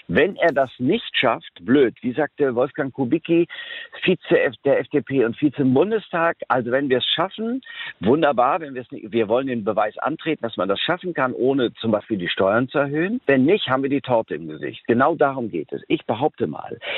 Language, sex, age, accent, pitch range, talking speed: German, male, 50-69, German, 120-195 Hz, 200 wpm